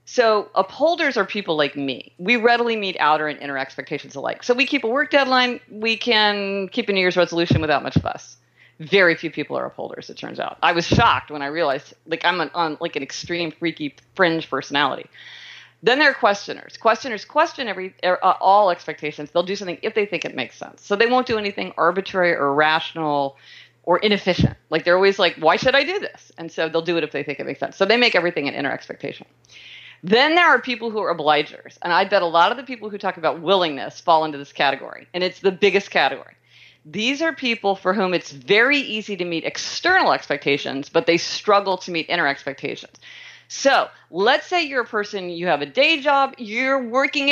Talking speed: 215 wpm